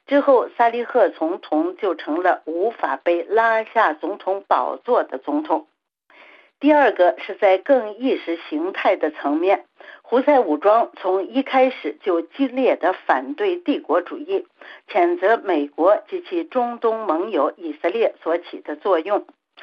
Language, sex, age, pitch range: Chinese, female, 60-79, 195-300 Hz